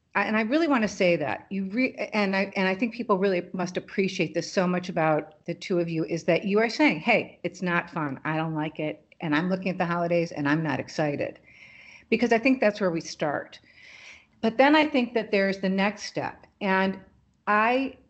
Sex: female